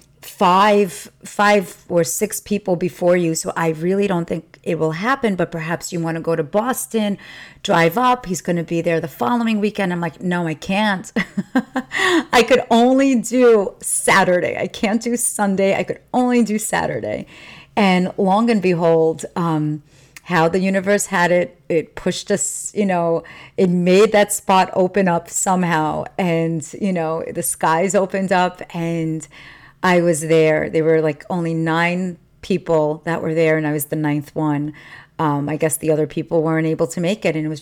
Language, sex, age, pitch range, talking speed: English, female, 40-59, 160-195 Hz, 180 wpm